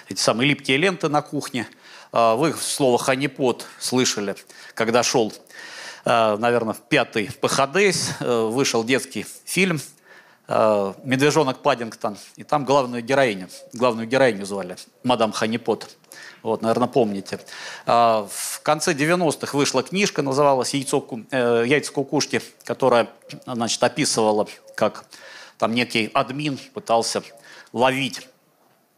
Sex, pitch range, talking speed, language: male, 115-145 Hz, 110 wpm, Russian